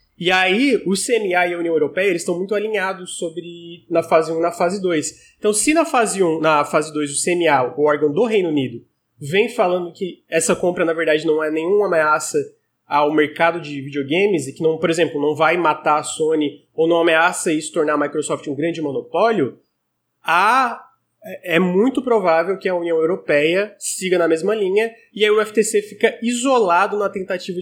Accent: Brazilian